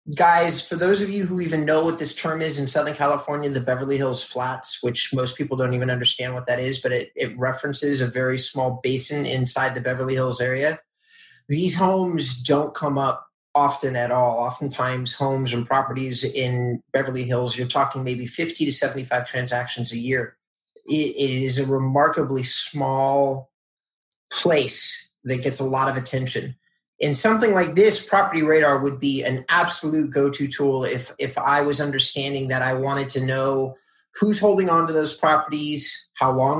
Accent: American